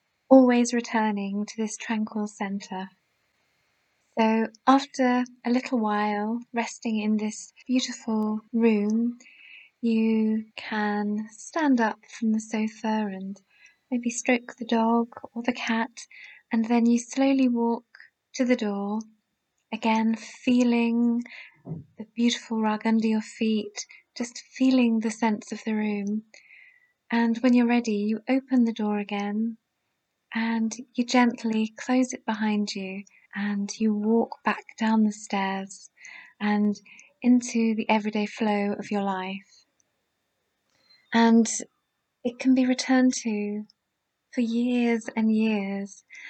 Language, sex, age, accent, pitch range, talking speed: English, female, 20-39, British, 210-245 Hz, 125 wpm